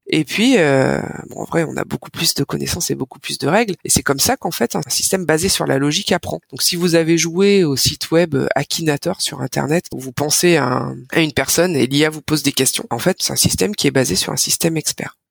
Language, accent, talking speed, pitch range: French, French, 250 wpm, 130-165 Hz